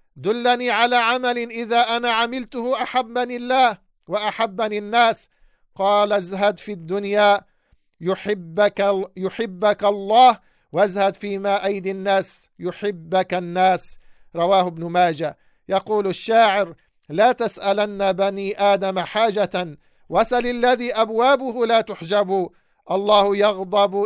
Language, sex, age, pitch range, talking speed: English, male, 50-69, 185-215 Hz, 100 wpm